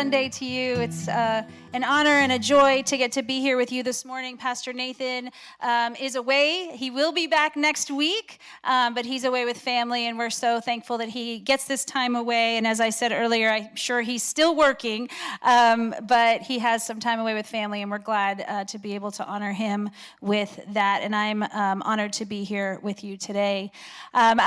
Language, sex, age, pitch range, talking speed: English, female, 30-49, 220-270 Hz, 215 wpm